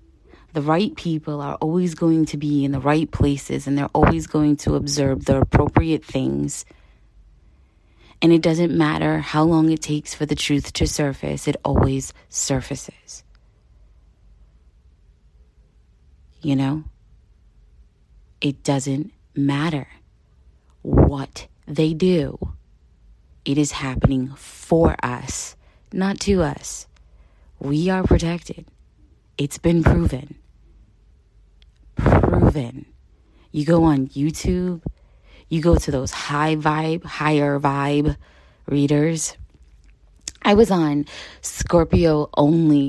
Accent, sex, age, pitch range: American, female, 30-49, 110-160 Hz